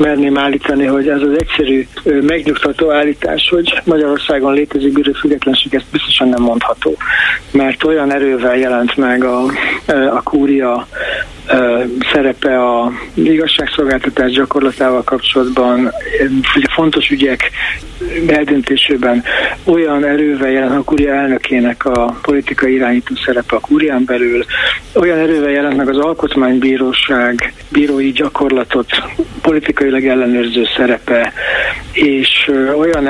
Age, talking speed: 60-79, 110 wpm